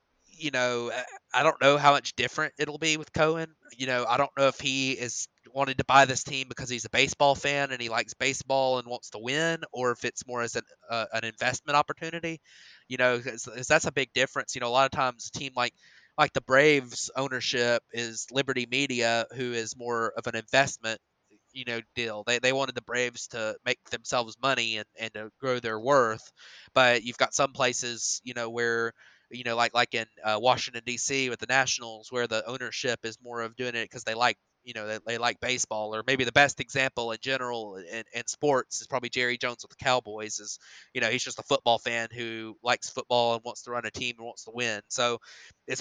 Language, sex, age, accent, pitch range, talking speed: English, male, 20-39, American, 120-135 Hz, 225 wpm